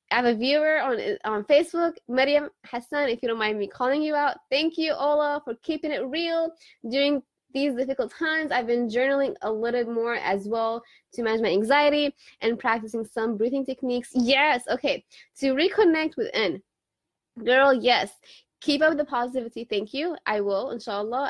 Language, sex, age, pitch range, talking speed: English, female, 20-39, 225-290 Hz, 170 wpm